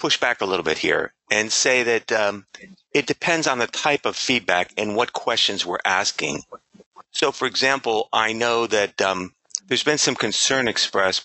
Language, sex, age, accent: English, male, 40-59, American